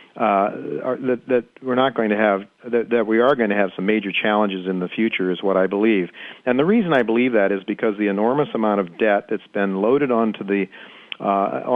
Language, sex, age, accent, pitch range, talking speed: English, male, 50-69, American, 100-115 Hz, 235 wpm